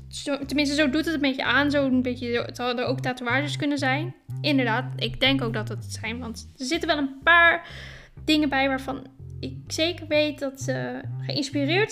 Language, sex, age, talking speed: Dutch, female, 10-29, 200 wpm